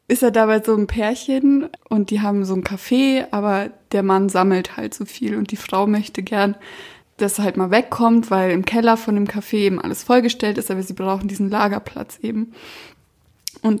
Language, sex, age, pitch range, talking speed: German, female, 20-39, 205-245 Hz, 200 wpm